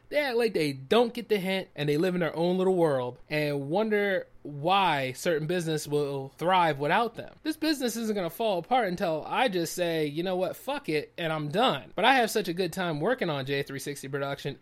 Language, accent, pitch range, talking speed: English, American, 155-245 Hz, 220 wpm